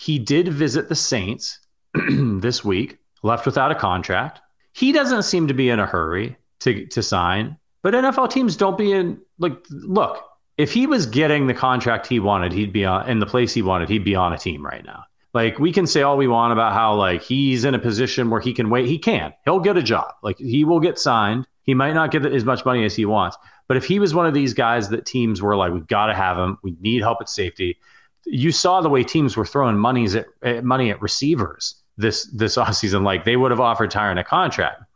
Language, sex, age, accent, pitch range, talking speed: English, male, 30-49, American, 105-140 Hz, 235 wpm